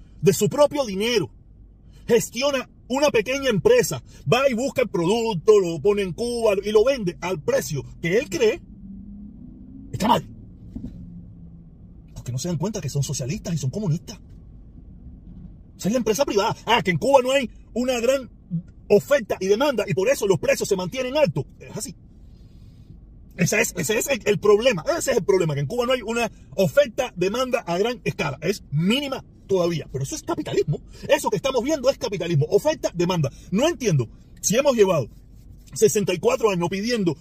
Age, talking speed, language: 40-59, 175 wpm, Spanish